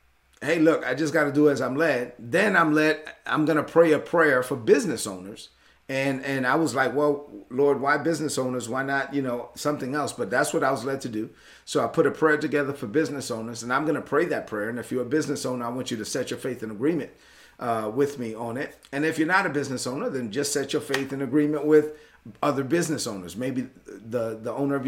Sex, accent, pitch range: male, American, 125-150 Hz